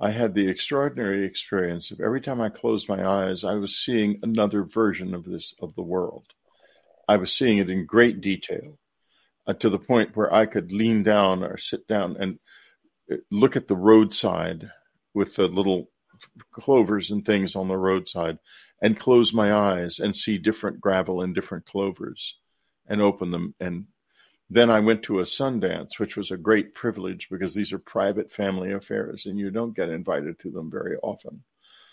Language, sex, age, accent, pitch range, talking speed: English, male, 50-69, American, 95-110 Hz, 180 wpm